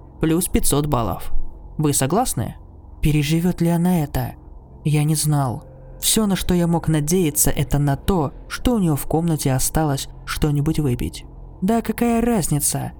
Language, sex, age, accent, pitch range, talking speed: Russian, male, 20-39, native, 140-170 Hz, 150 wpm